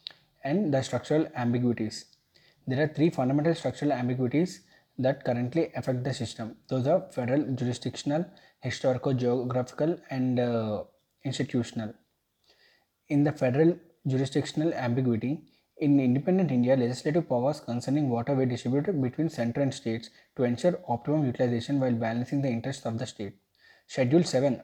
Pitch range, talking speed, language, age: 120-145 Hz, 130 wpm, English, 20-39